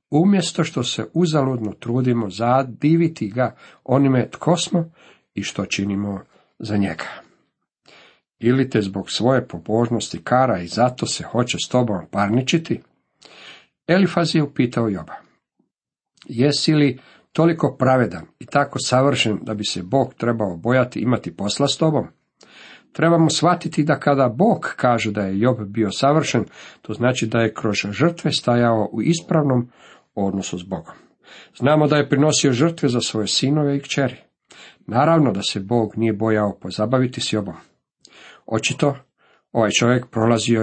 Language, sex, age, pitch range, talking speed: Croatian, male, 50-69, 110-145 Hz, 140 wpm